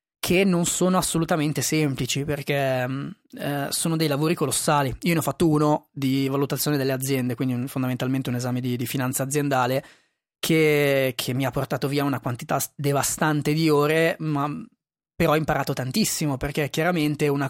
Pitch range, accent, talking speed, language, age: 135-165 Hz, native, 160 wpm, Italian, 20-39